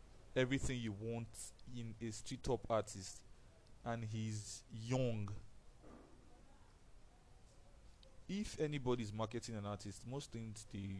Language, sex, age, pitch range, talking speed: English, male, 20-39, 100-120 Hz, 105 wpm